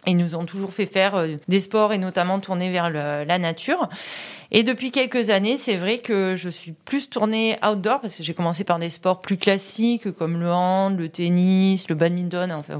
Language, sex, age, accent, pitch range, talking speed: French, female, 30-49, French, 175-220 Hz, 200 wpm